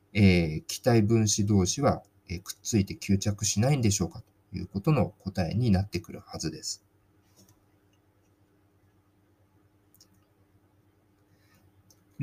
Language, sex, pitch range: Japanese, male, 100-125 Hz